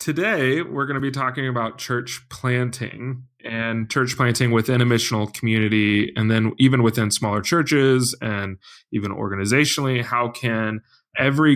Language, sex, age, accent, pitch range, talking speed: English, male, 20-39, American, 110-125 Hz, 145 wpm